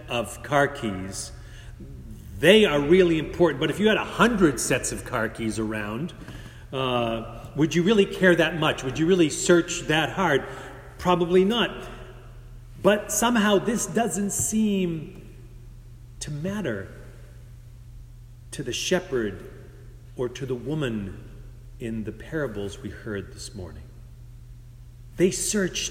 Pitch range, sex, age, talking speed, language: 120-155 Hz, male, 40-59, 130 wpm, English